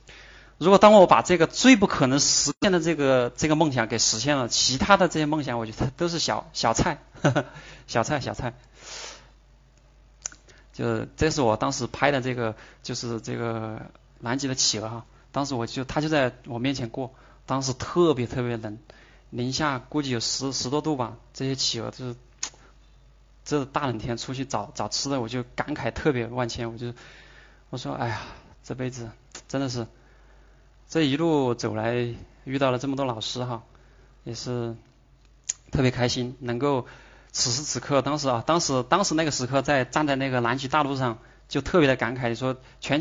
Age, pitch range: 20-39, 120-140 Hz